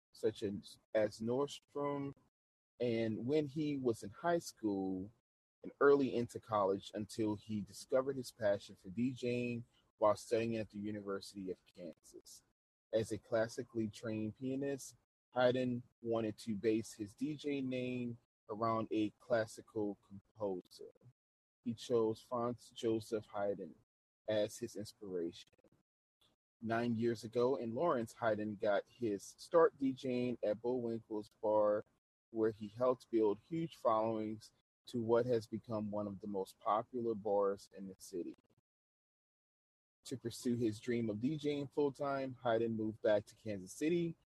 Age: 30-49